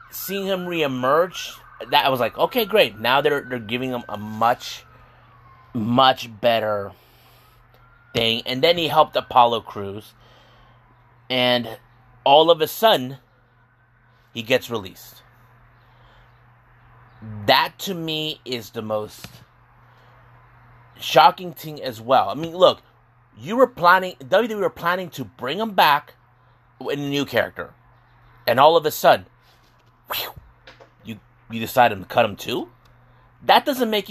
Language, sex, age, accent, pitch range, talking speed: English, male, 30-49, American, 120-155 Hz, 130 wpm